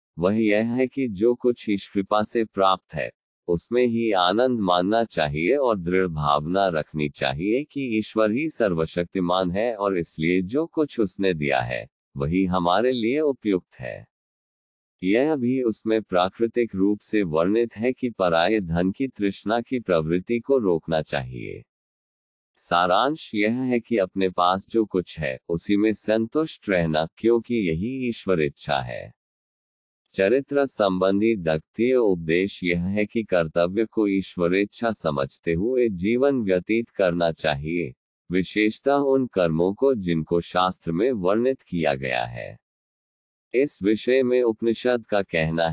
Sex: male